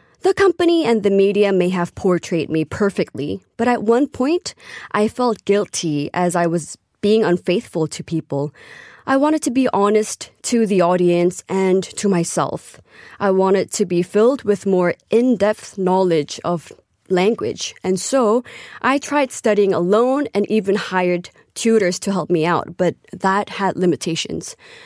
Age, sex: 20-39, female